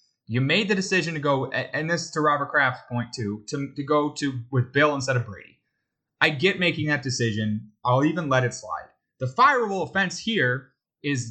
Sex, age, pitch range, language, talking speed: male, 20-39, 120-175 Hz, English, 200 wpm